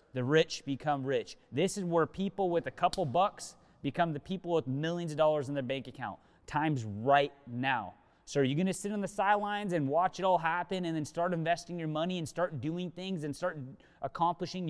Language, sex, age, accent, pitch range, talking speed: English, male, 30-49, American, 140-190 Hz, 210 wpm